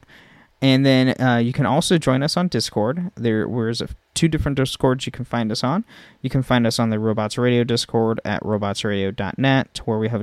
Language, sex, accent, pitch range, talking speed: English, male, American, 110-130 Hz, 205 wpm